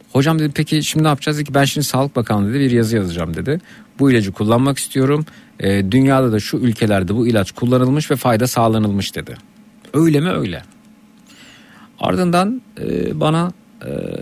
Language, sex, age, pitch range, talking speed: Turkish, male, 50-69, 120-160 Hz, 165 wpm